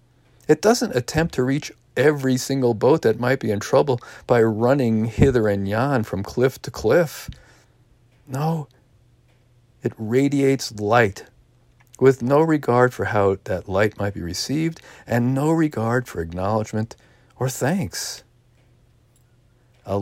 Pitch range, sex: 105-125 Hz, male